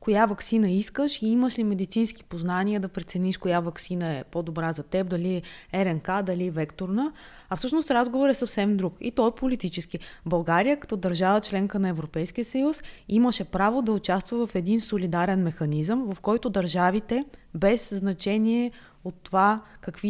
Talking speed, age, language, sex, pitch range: 165 wpm, 20-39, Bulgarian, female, 180-235 Hz